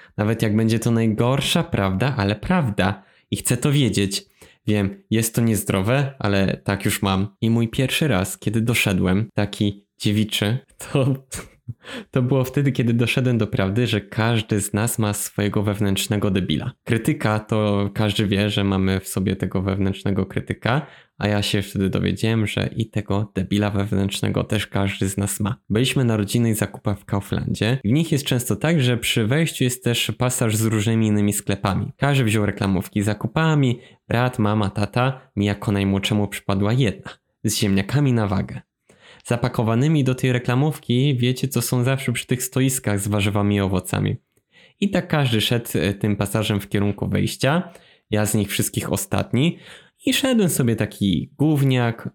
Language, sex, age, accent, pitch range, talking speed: Polish, male, 20-39, native, 100-130 Hz, 165 wpm